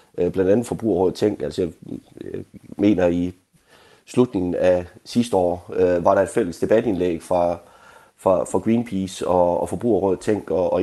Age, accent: 30-49, native